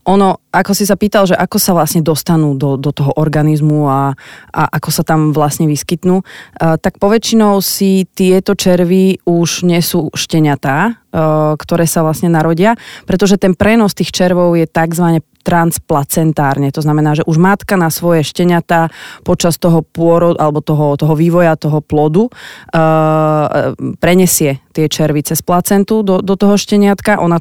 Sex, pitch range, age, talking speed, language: female, 150-175 Hz, 30-49, 155 wpm, Slovak